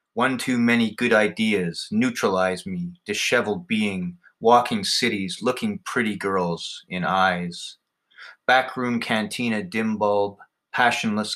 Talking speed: 110 wpm